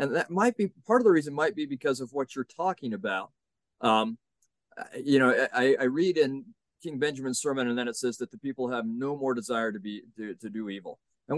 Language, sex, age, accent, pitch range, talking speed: English, male, 40-59, American, 130-195 Hz, 230 wpm